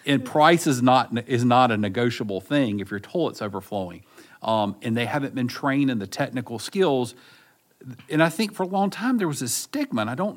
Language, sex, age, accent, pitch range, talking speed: English, male, 50-69, American, 120-190 Hz, 215 wpm